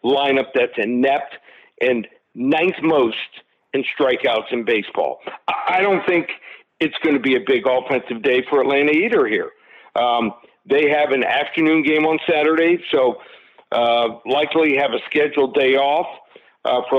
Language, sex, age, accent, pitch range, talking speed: English, male, 50-69, American, 135-170 Hz, 150 wpm